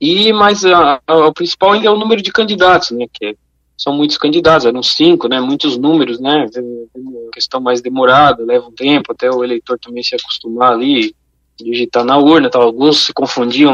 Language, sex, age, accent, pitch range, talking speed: Portuguese, male, 20-39, Brazilian, 125-175 Hz, 185 wpm